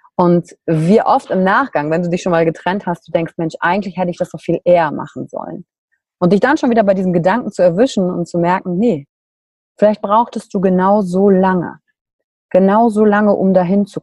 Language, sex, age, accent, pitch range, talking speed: German, female, 30-49, German, 170-215 Hz, 215 wpm